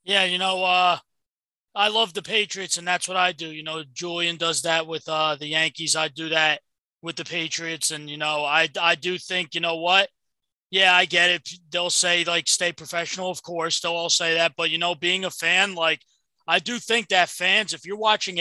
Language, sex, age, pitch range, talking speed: English, male, 20-39, 170-205 Hz, 220 wpm